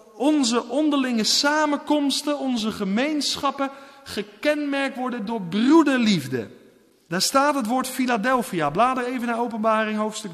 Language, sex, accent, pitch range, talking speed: Dutch, male, Dutch, 185-265 Hz, 110 wpm